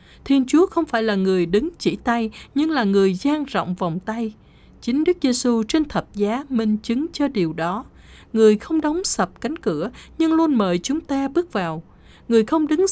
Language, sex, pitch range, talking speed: Vietnamese, female, 195-280 Hz, 200 wpm